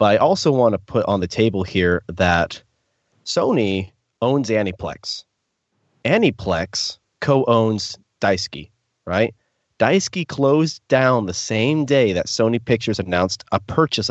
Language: English